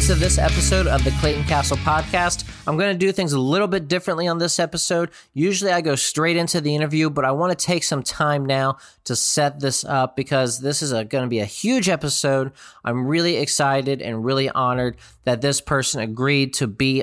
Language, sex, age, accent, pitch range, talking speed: English, male, 20-39, American, 120-155 Hz, 210 wpm